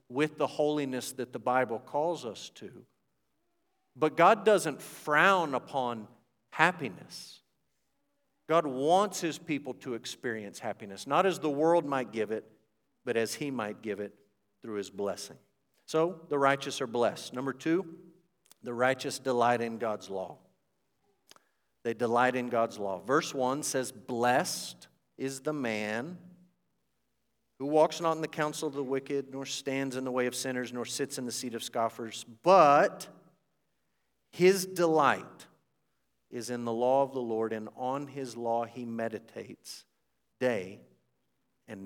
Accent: American